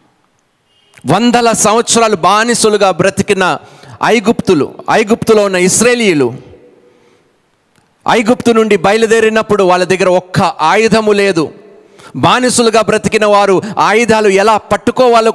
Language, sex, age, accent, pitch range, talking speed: Telugu, male, 40-59, native, 155-220 Hz, 85 wpm